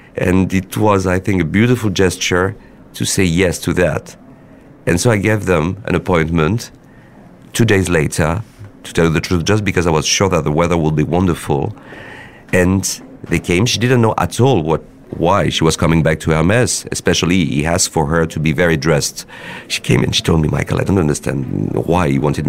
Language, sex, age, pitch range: Korean, male, 50-69, 80-105 Hz